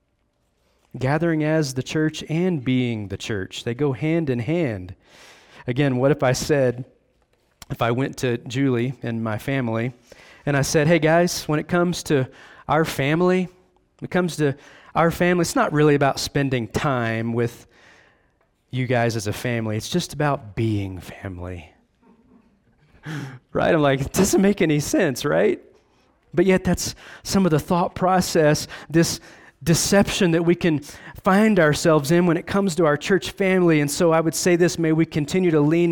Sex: male